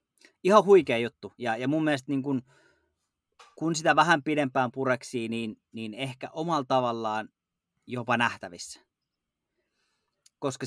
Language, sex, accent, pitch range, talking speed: Finnish, male, native, 110-135 Hz, 125 wpm